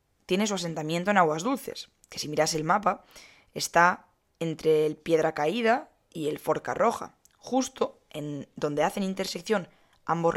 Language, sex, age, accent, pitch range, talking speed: Spanish, female, 20-39, Spanish, 160-225 Hz, 150 wpm